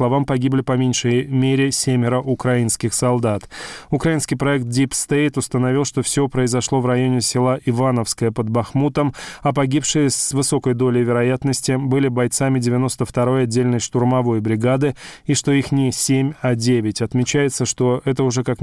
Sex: male